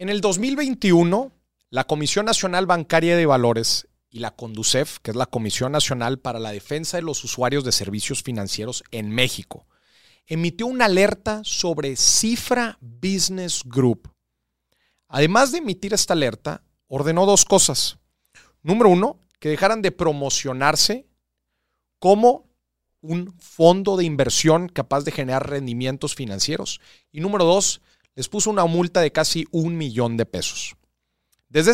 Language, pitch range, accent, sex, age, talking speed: Spanish, 125-190 Hz, Mexican, male, 40-59, 140 wpm